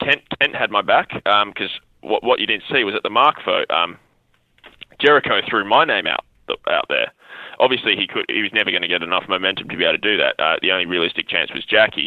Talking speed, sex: 245 wpm, male